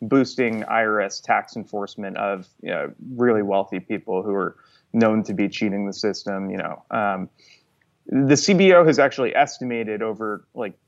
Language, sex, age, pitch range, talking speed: English, male, 20-39, 105-125 Hz, 145 wpm